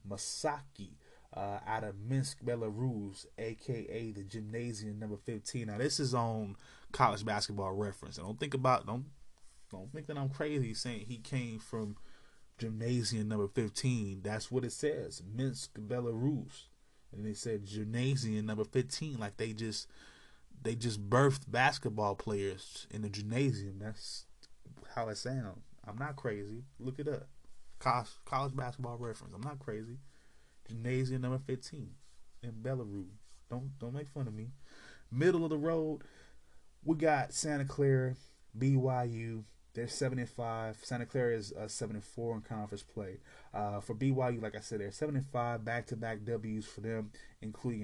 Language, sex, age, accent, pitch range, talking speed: English, male, 20-39, American, 105-130 Hz, 150 wpm